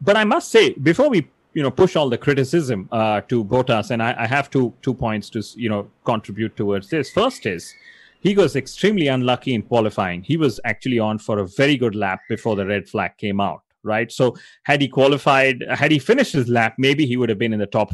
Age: 30-49